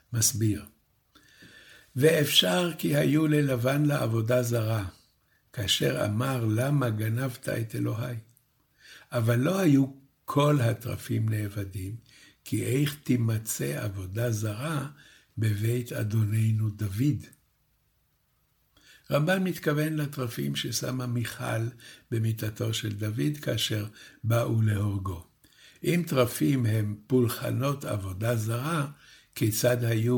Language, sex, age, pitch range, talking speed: Hebrew, male, 60-79, 110-145 Hz, 90 wpm